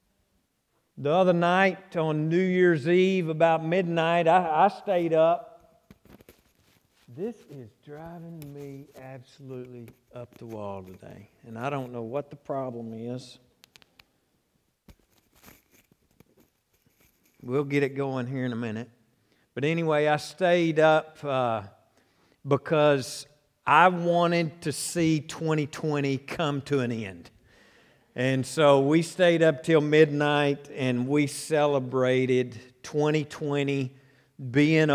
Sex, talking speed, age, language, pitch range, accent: male, 115 wpm, 50-69, English, 125-165 Hz, American